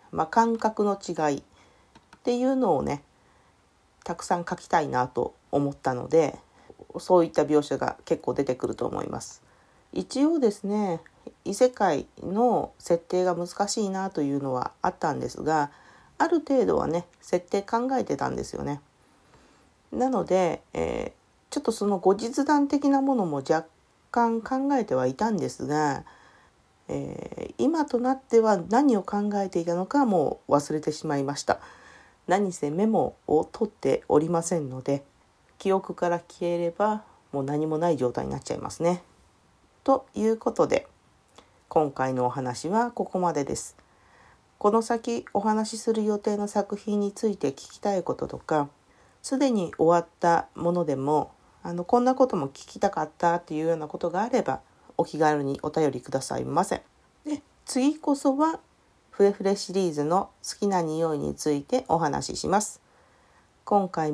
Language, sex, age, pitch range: Japanese, female, 40-59, 150-225 Hz